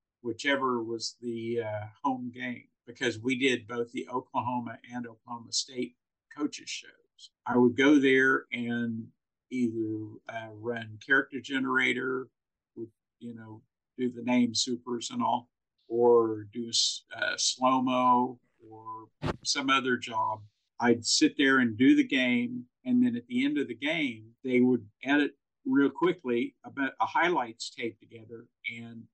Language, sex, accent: English, male, American